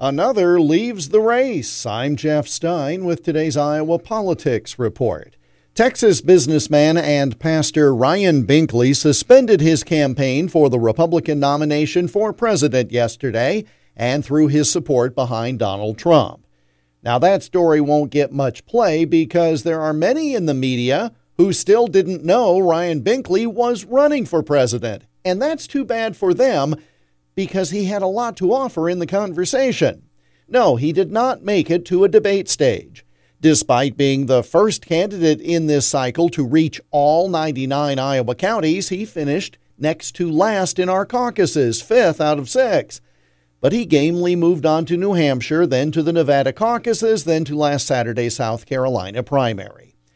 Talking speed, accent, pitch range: 155 wpm, American, 135-185 Hz